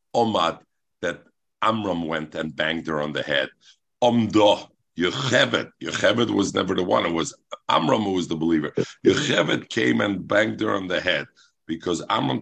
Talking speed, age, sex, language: 165 wpm, 50-69, male, English